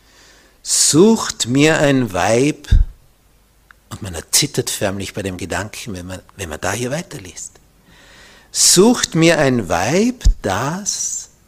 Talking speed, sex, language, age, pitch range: 120 wpm, male, German, 60-79, 95-150 Hz